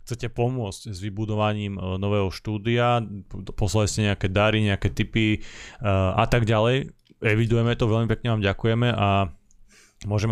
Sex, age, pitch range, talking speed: male, 30-49, 105-115 Hz, 145 wpm